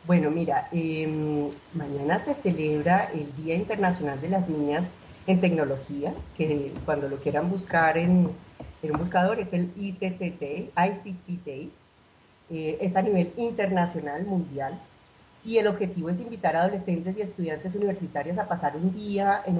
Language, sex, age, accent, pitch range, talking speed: Spanish, female, 40-59, Colombian, 155-190 Hz, 145 wpm